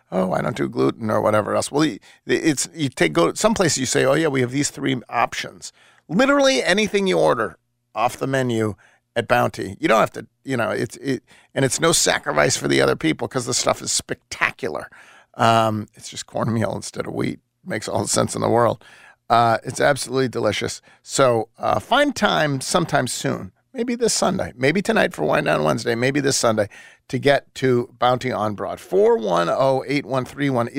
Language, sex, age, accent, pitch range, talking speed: English, male, 40-59, American, 110-145 Hz, 190 wpm